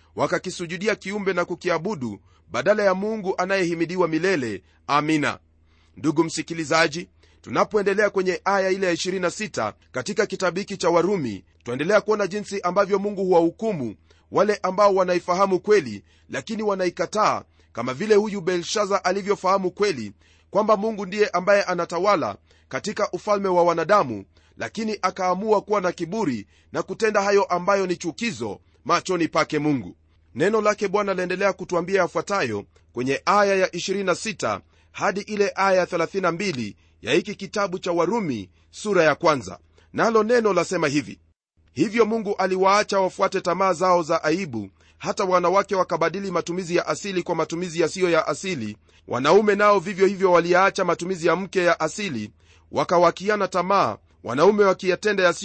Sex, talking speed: male, 135 wpm